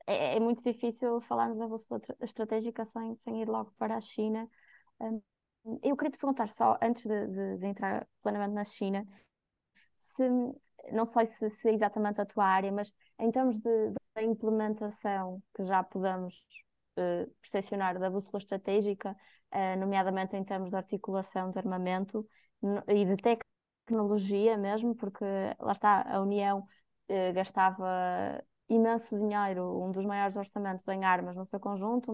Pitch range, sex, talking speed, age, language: 195-230 Hz, female, 150 wpm, 20-39, Portuguese